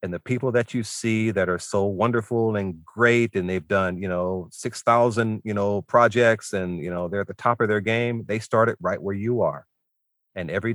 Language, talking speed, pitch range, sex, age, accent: English, 220 wpm, 95-120 Hz, male, 40-59, American